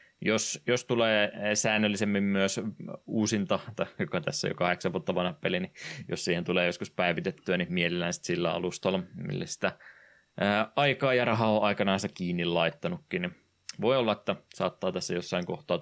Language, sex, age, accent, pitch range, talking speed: Finnish, male, 20-39, native, 90-110 Hz, 165 wpm